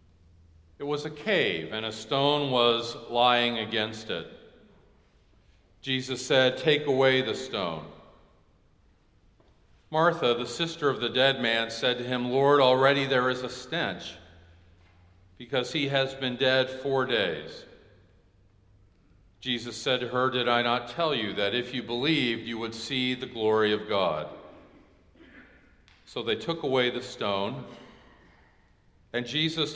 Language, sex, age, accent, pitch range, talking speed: English, male, 50-69, American, 105-135 Hz, 135 wpm